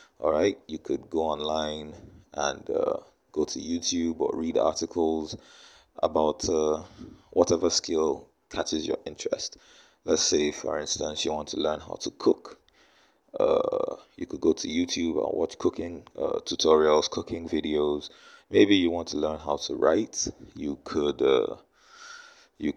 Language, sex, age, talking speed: English, male, 30-49, 140 wpm